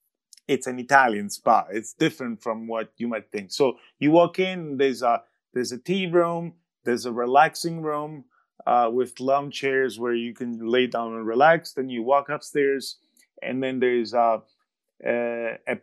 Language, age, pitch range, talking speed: English, 30-49, 125-160 Hz, 175 wpm